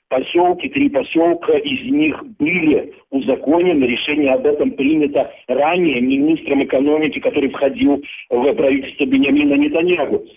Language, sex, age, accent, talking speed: Russian, male, 50-69, native, 115 wpm